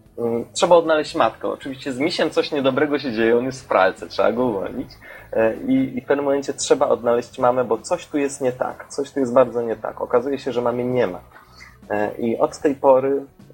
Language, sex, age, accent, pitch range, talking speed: Polish, male, 30-49, native, 110-150 Hz, 205 wpm